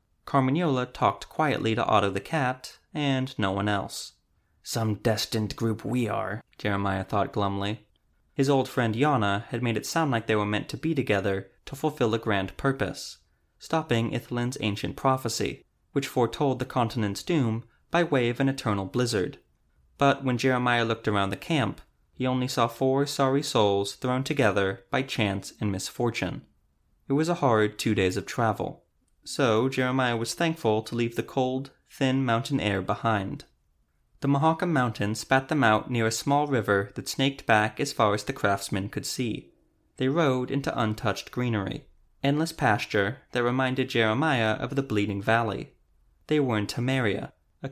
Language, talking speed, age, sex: English, 165 wpm, 20-39, male